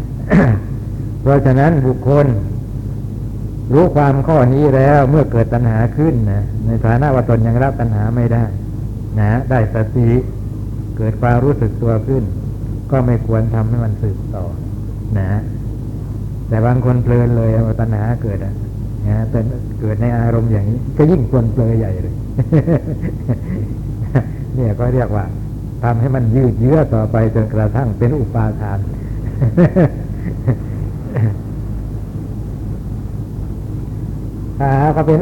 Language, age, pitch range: Thai, 60-79, 110-130 Hz